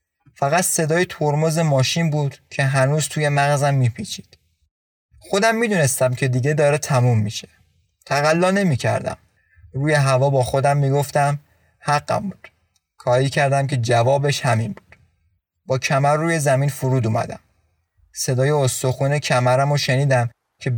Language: Persian